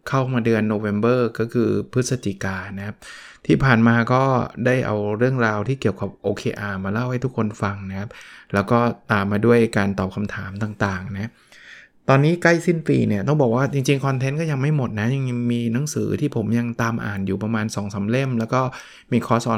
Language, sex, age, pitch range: Thai, male, 20-39, 110-130 Hz